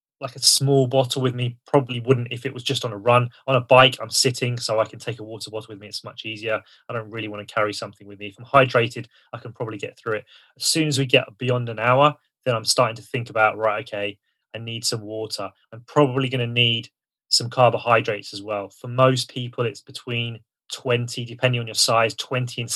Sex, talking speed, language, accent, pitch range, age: male, 240 wpm, English, British, 110-130 Hz, 20-39